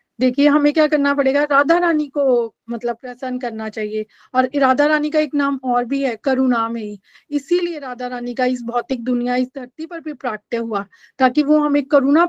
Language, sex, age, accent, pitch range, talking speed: Hindi, female, 30-49, native, 250-295 Hz, 200 wpm